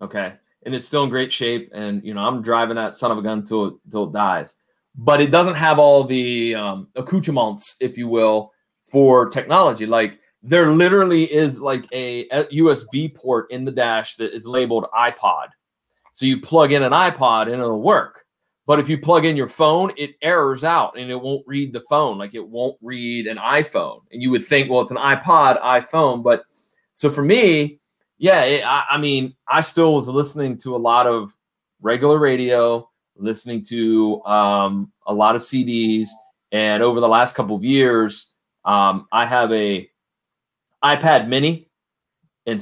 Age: 30-49